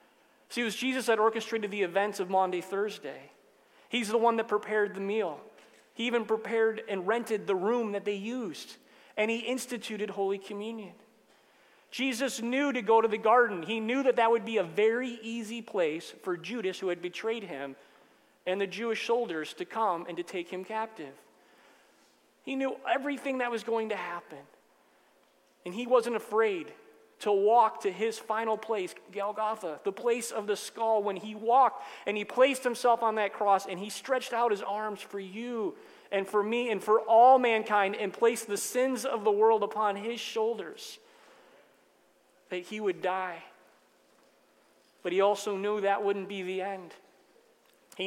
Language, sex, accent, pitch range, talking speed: English, male, American, 195-235 Hz, 175 wpm